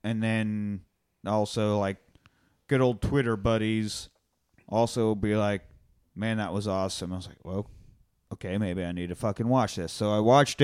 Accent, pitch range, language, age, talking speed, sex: American, 105-140 Hz, English, 30-49, 170 wpm, male